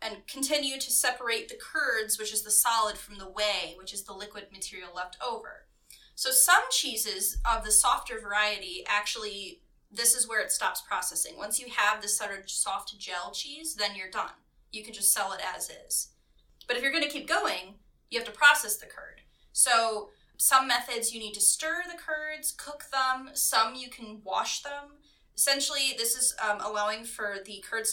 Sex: female